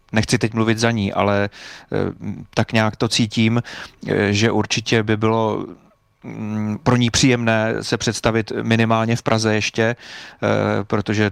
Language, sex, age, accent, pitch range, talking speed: Czech, male, 30-49, native, 105-115 Hz, 125 wpm